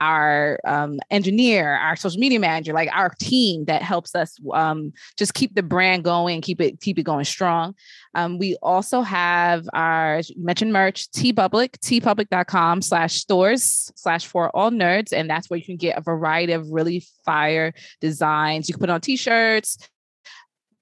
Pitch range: 165-195 Hz